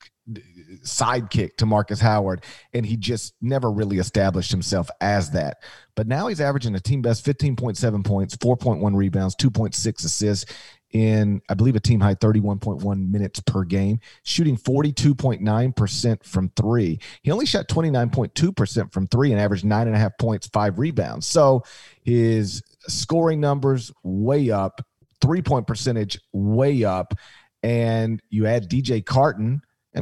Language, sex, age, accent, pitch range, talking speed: English, male, 40-59, American, 105-130 Hz, 150 wpm